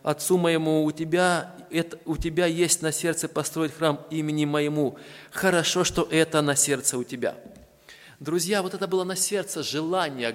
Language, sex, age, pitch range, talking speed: Russian, male, 20-39, 135-165 Hz, 160 wpm